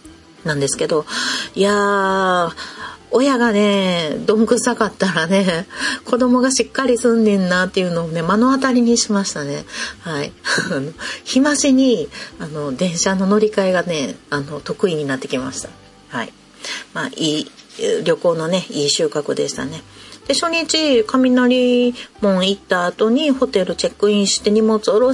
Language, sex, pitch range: Japanese, female, 185-265 Hz